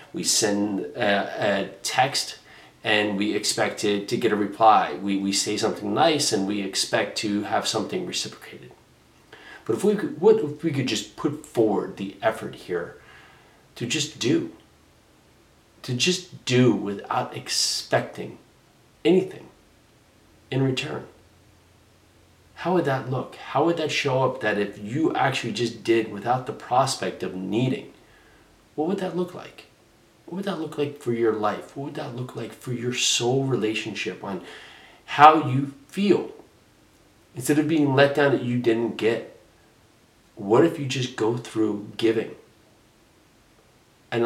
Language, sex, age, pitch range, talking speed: English, male, 30-49, 105-140 Hz, 155 wpm